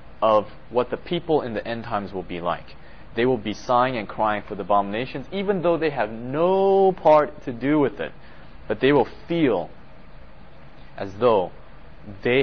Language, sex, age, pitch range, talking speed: English, male, 20-39, 95-145 Hz, 180 wpm